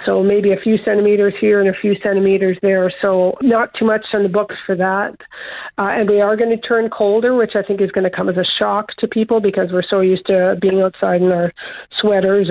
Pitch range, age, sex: 195-225 Hz, 50-69, female